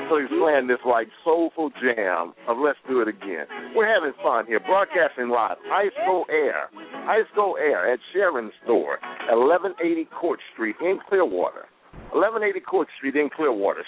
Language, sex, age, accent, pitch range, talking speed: English, male, 60-79, American, 125-185 Hz, 165 wpm